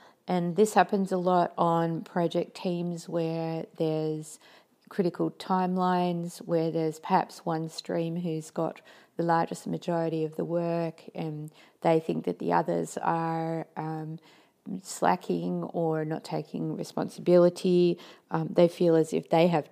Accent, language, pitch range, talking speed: Australian, English, 160-185 Hz, 135 wpm